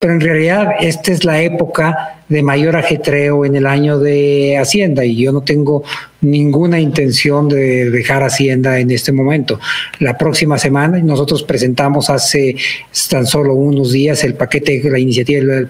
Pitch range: 135-155 Hz